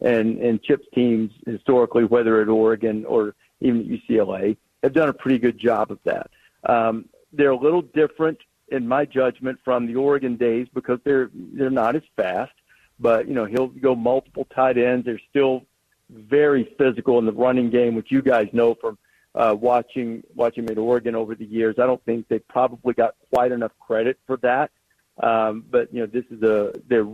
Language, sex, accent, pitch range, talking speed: English, male, American, 110-125 Hz, 190 wpm